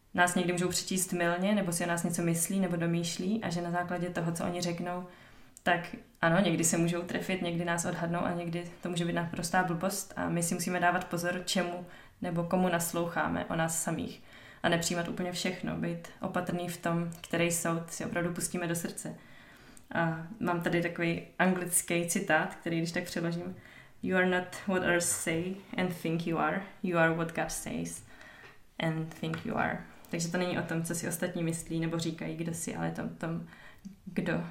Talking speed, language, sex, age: 195 wpm, Czech, female, 20-39